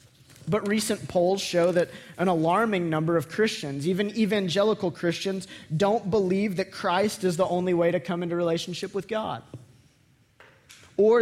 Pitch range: 140-180 Hz